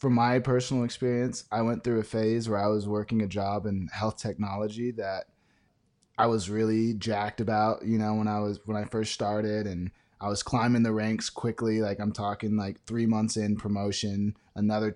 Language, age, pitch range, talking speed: English, 20-39, 105-120 Hz, 195 wpm